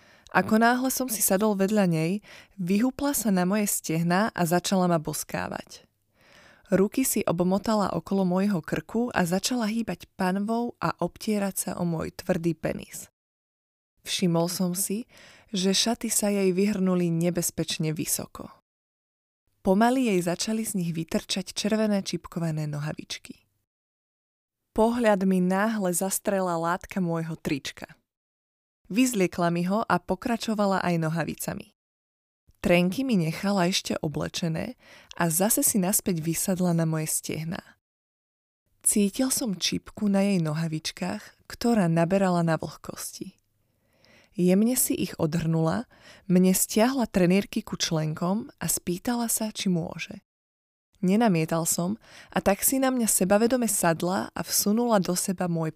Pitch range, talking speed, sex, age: 165-210 Hz, 125 wpm, female, 20-39